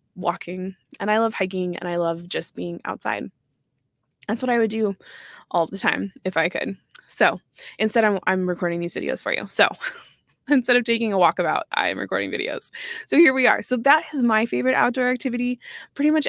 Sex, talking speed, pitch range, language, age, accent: female, 200 wpm, 175-220 Hz, English, 20-39, American